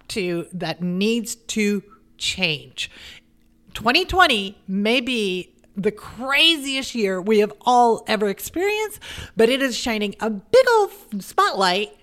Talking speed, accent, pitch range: 120 wpm, American, 195-250 Hz